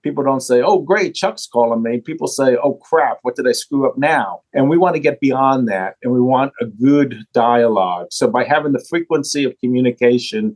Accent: American